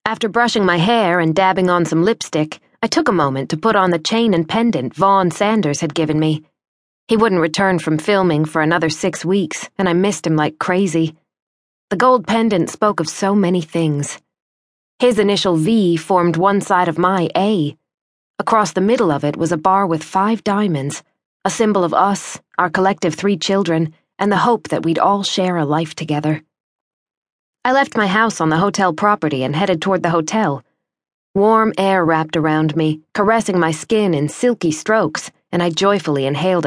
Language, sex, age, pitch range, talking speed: English, female, 20-39, 160-205 Hz, 185 wpm